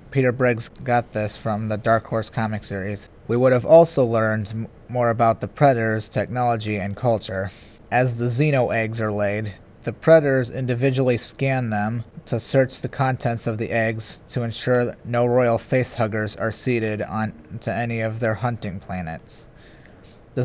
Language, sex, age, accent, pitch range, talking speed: English, male, 30-49, American, 110-125 Hz, 160 wpm